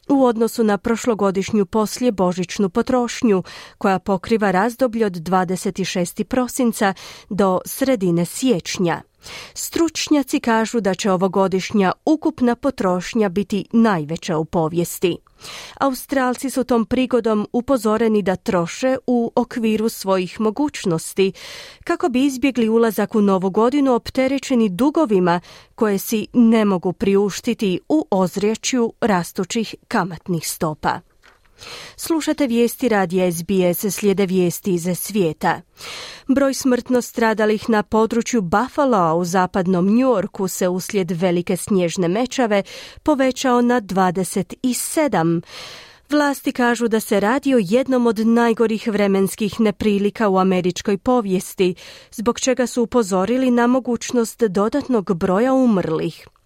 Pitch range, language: 190-245 Hz, Croatian